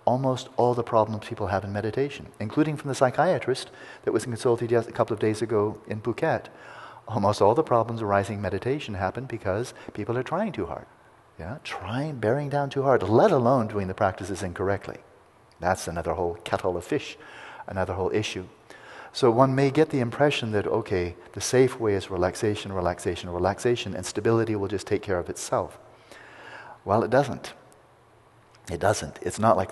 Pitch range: 100-130 Hz